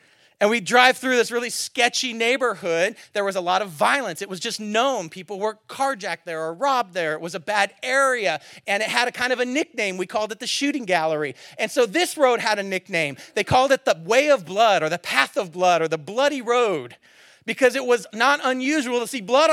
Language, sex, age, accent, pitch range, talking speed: English, male, 40-59, American, 195-260 Hz, 230 wpm